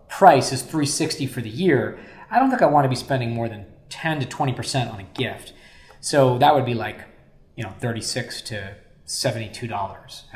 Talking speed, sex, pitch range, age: 185 wpm, male, 110-135 Hz, 20-39